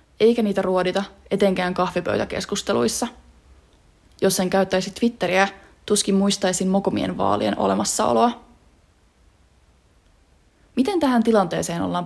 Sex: female